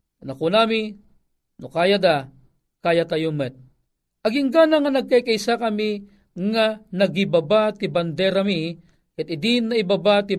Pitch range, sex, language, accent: 165-230 Hz, male, Filipino, native